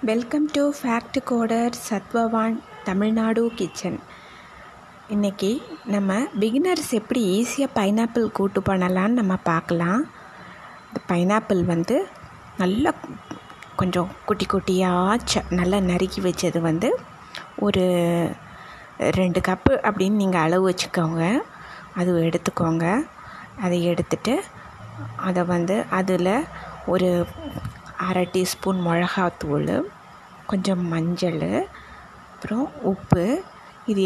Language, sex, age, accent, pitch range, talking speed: Tamil, female, 20-39, native, 180-225 Hz, 90 wpm